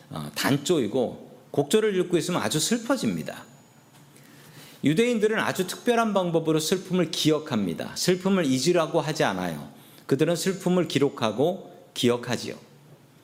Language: Korean